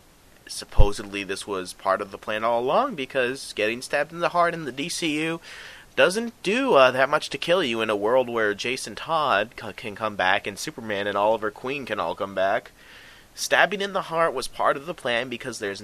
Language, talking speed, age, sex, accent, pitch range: English, 210 wpm, 30-49, male, American, 105-140 Hz